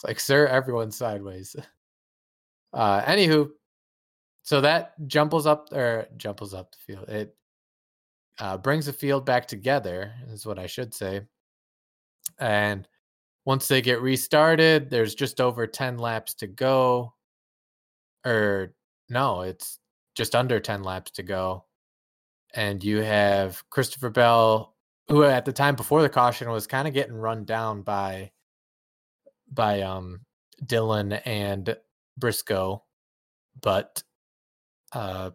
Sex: male